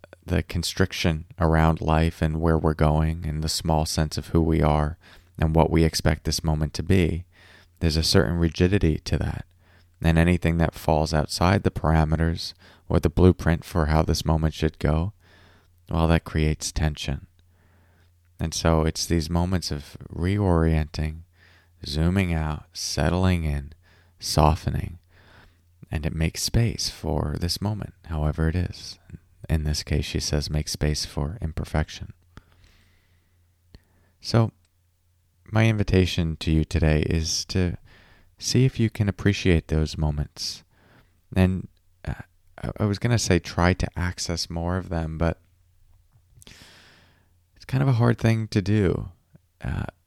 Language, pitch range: English, 80-95 Hz